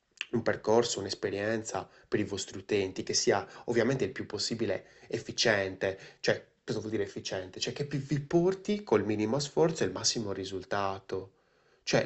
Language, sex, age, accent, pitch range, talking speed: Italian, male, 20-39, native, 105-140 Hz, 155 wpm